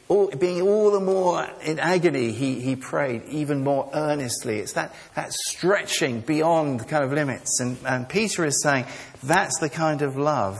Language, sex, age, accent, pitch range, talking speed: English, male, 50-69, British, 150-200 Hz, 180 wpm